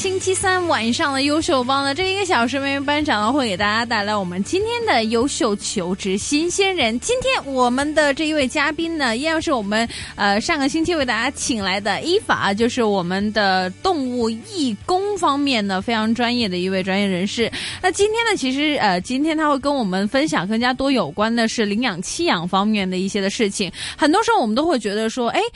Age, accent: 20-39, native